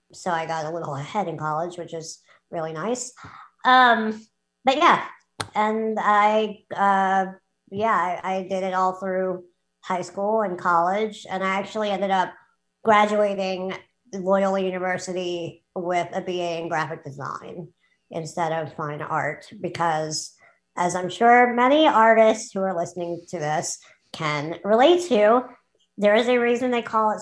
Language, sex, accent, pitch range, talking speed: English, male, American, 165-205 Hz, 150 wpm